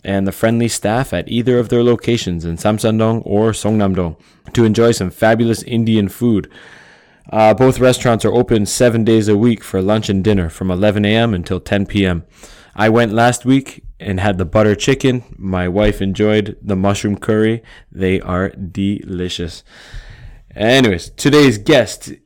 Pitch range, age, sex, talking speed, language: 95-115 Hz, 20-39, male, 160 wpm, English